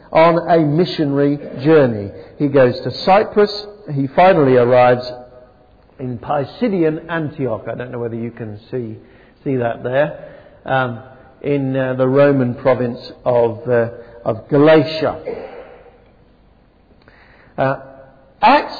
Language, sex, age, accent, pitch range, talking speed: English, male, 50-69, British, 125-200 Hz, 115 wpm